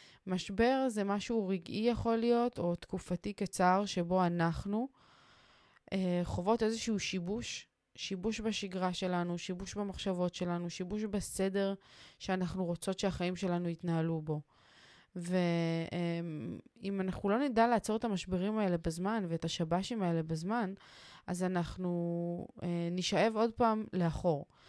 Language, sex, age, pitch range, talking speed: Hebrew, female, 20-39, 170-200 Hz, 120 wpm